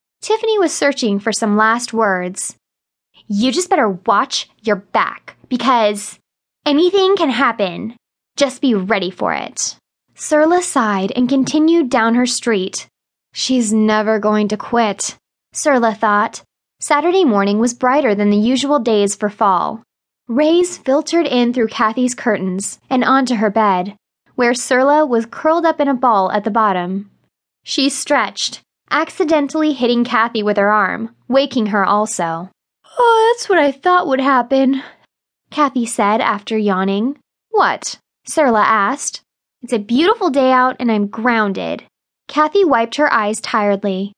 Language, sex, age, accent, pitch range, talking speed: English, female, 10-29, American, 215-290 Hz, 145 wpm